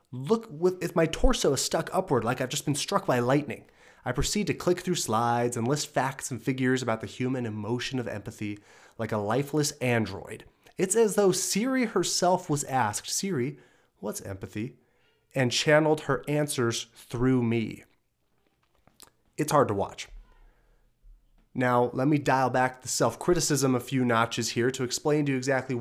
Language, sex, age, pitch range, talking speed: English, male, 30-49, 110-140 Hz, 165 wpm